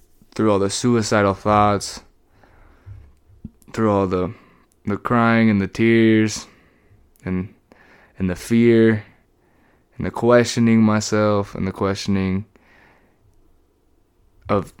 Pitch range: 95-110 Hz